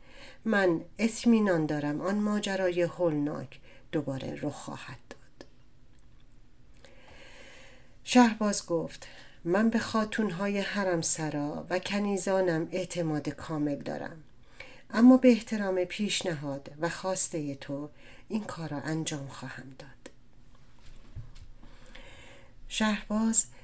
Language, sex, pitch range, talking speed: Persian, female, 145-195 Hz, 90 wpm